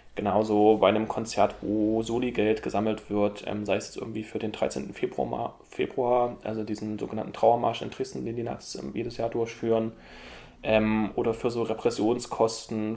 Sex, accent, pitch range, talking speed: male, German, 105-130 Hz, 165 wpm